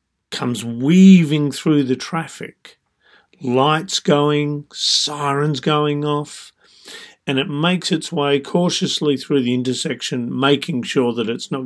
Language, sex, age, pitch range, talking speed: English, male, 50-69, 125-165 Hz, 125 wpm